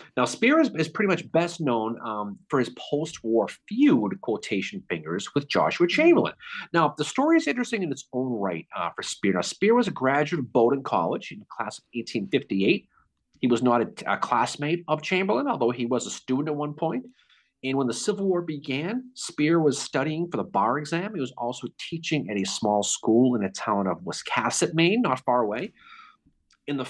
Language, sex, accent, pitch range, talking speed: English, male, American, 120-185 Hz, 205 wpm